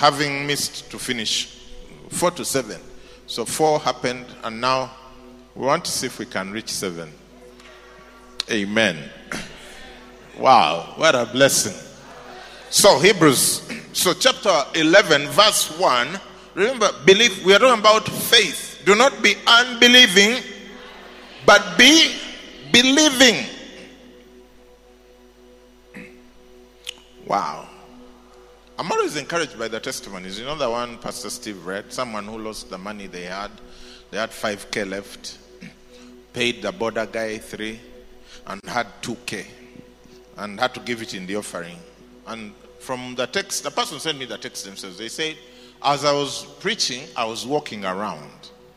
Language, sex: English, male